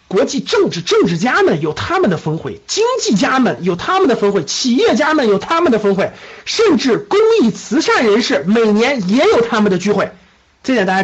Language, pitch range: Chinese, 195-290 Hz